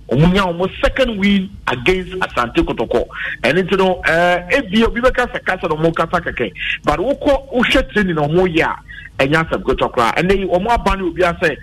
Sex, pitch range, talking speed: male, 150-190 Hz, 110 wpm